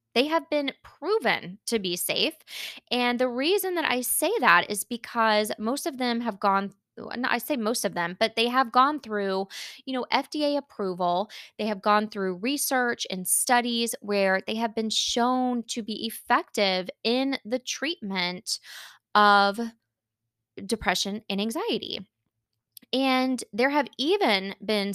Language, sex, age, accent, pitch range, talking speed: English, female, 20-39, American, 195-250 Hz, 150 wpm